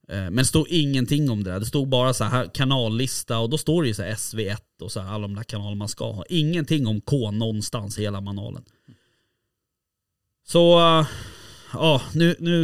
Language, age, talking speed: Swedish, 20-39, 200 wpm